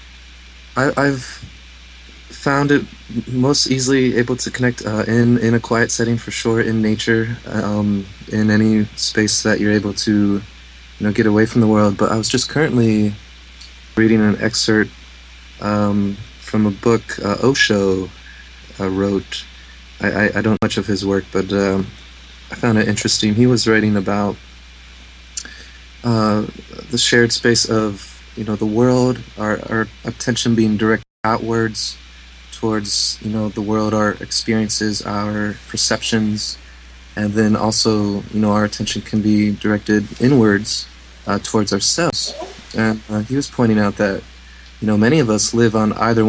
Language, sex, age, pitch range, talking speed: English, male, 20-39, 95-110 Hz, 160 wpm